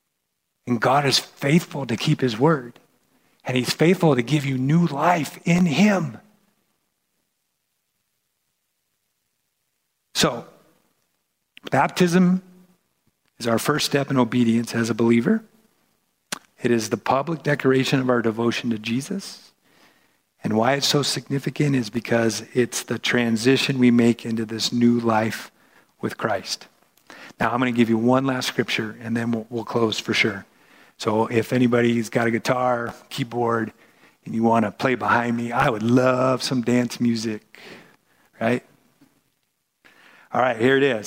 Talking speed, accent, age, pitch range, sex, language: 145 wpm, American, 50-69, 120-160 Hz, male, English